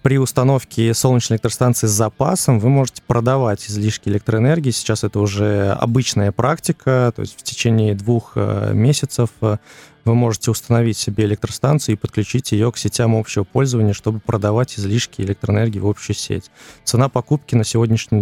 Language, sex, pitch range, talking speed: Russian, male, 105-125 Hz, 150 wpm